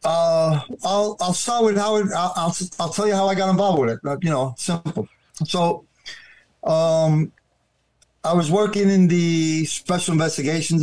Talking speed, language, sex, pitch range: 165 wpm, English, male, 135-170 Hz